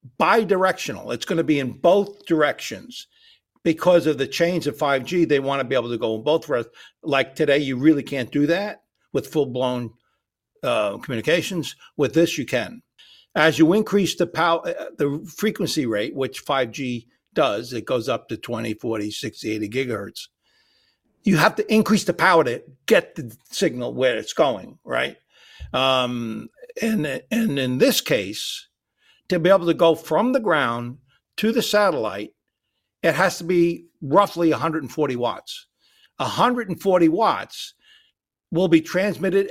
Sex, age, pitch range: male, 60-79, 135-185 Hz